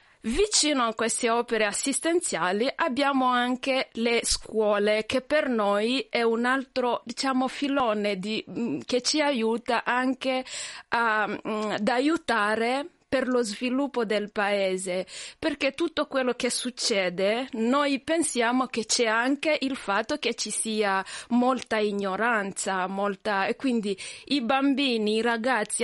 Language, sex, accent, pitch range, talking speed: Italian, female, native, 205-255 Hz, 125 wpm